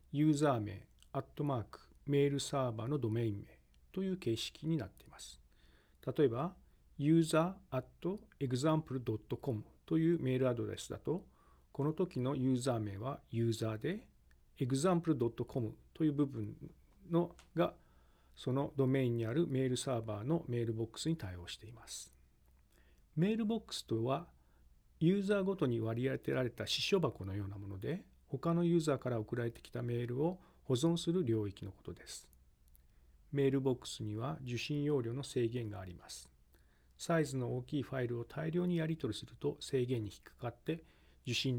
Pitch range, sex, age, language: 105-155 Hz, male, 40-59, Japanese